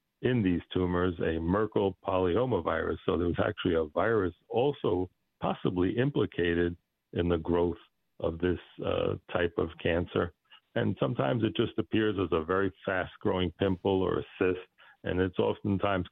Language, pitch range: English, 85-95 Hz